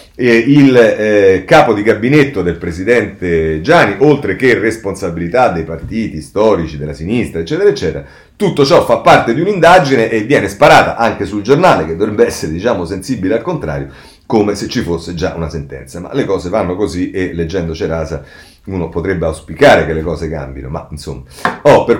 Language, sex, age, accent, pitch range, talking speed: Italian, male, 40-59, native, 85-130 Hz, 175 wpm